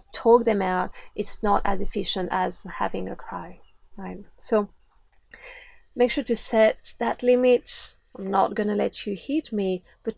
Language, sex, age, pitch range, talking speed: English, female, 30-49, 195-235 Hz, 160 wpm